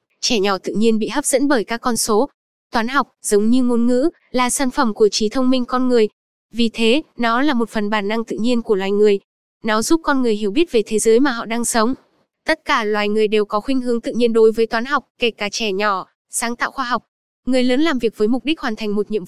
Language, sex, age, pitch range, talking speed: Vietnamese, female, 10-29, 215-265 Hz, 265 wpm